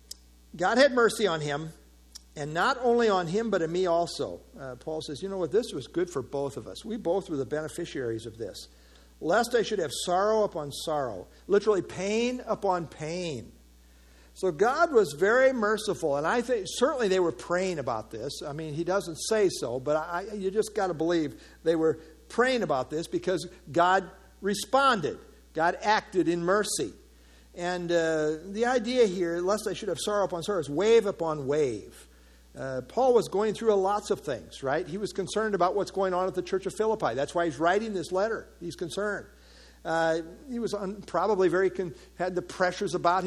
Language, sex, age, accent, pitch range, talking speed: English, male, 50-69, American, 155-205 Hz, 190 wpm